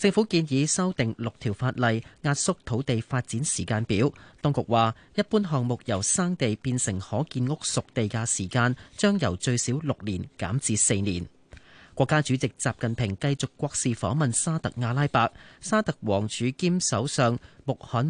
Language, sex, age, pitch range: Chinese, male, 30-49, 110-145 Hz